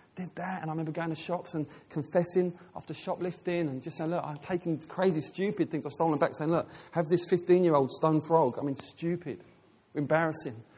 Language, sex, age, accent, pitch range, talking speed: English, male, 30-49, British, 160-215 Hz, 195 wpm